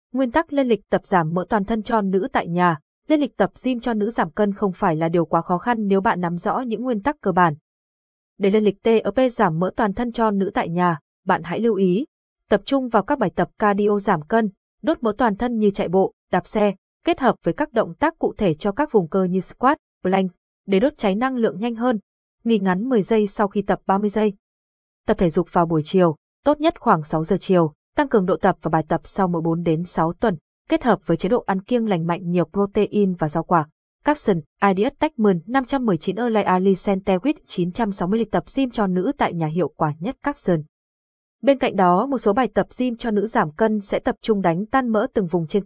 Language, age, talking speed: Vietnamese, 20-39, 235 wpm